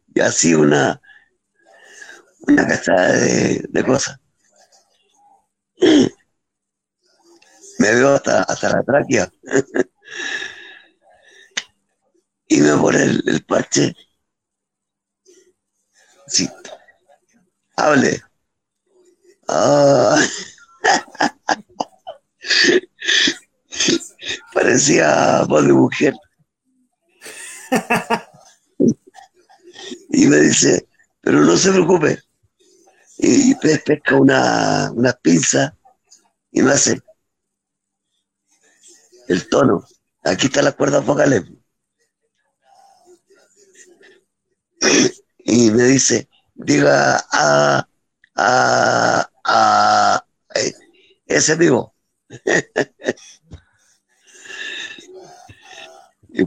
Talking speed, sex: 60 wpm, male